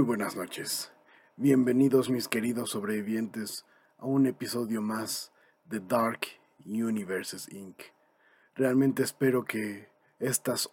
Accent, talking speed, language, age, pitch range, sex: Mexican, 105 wpm, Spanish, 40-59, 105-130 Hz, male